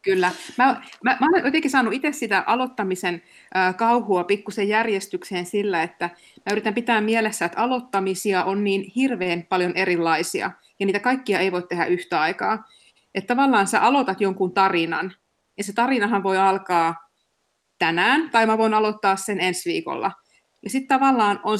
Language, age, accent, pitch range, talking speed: Finnish, 30-49, native, 185-230 Hz, 160 wpm